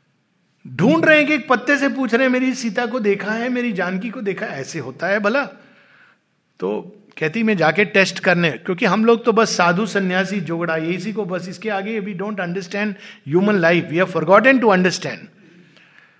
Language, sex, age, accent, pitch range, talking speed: Hindi, male, 50-69, native, 170-220 Hz, 190 wpm